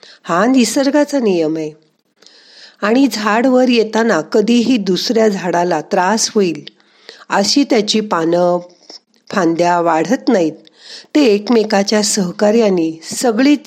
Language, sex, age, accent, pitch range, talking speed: Marathi, female, 50-69, native, 175-245 Hz, 95 wpm